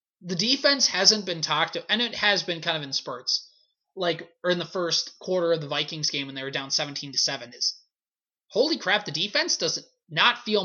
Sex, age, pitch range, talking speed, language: male, 20-39, 155-210 Hz, 215 wpm, English